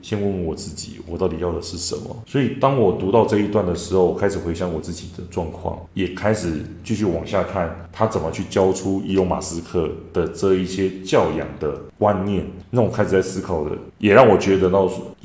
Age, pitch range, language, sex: 20-39, 85-105 Hz, Chinese, male